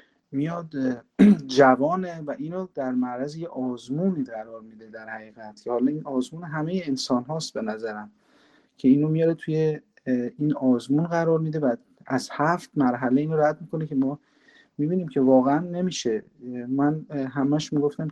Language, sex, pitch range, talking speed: Persian, male, 125-155 Hz, 150 wpm